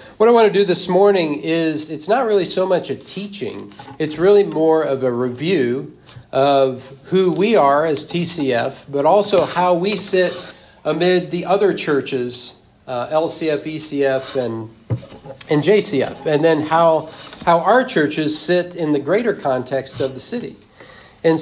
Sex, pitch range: male, 135-170 Hz